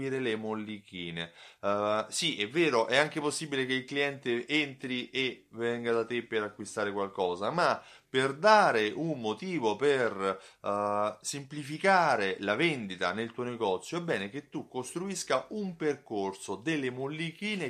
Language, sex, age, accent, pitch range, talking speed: Italian, male, 30-49, native, 110-155 Hz, 140 wpm